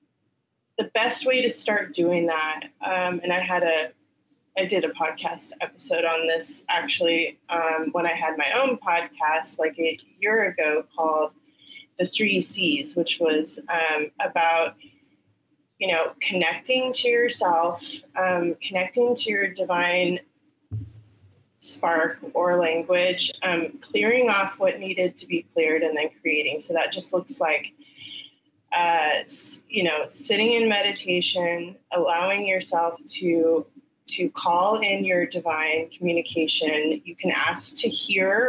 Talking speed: 135 wpm